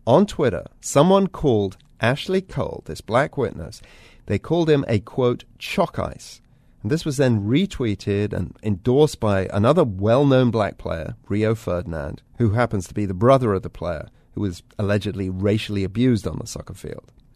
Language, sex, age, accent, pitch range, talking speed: English, male, 40-59, British, 105-150 Hz, 165 wpm